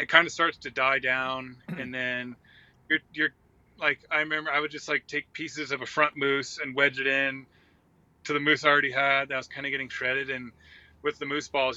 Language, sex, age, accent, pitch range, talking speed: English, male, 30-49, American, 120-145 Hz, 225 wpm